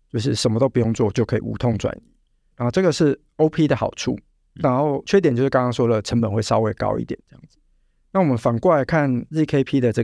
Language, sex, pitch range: Chinese, male, 115-155 Hz